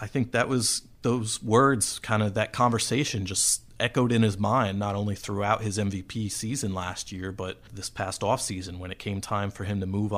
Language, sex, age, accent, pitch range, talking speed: English, male, 30-49, American, 100-115 Hz, 210 wpm